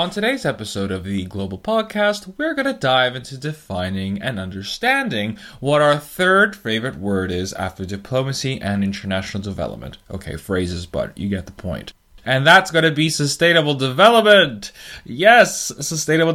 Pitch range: 105-165 Hz